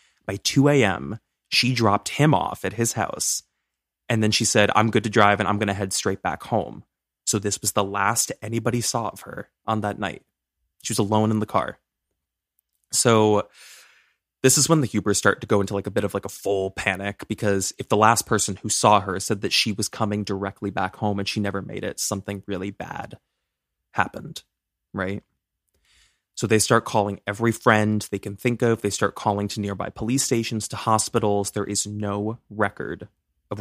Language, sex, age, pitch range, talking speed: English, male, 20-39, 100-110 Hz, 200 wpm